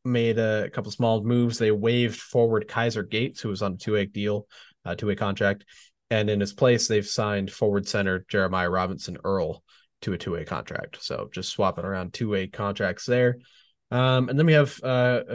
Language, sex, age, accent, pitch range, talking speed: English, male, 20-39, American, 95-115 Hz, 185 wpm